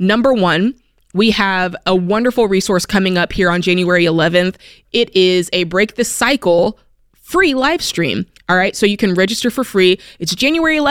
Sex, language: female, English